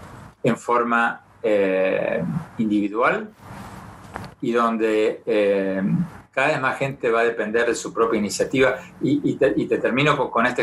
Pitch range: 110-165 Hz